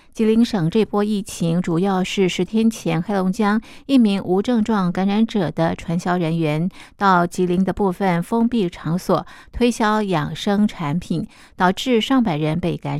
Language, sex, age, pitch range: Chinese, female, 50-69, 175-225 Hz